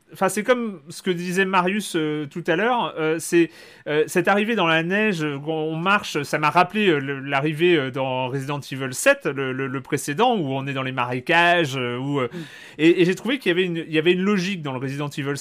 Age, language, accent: 30-49, French, French